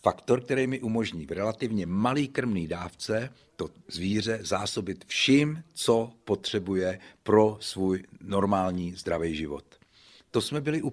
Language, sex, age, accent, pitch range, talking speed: Czech, male, 50-69, native, 95-115 Hz, 130 wpm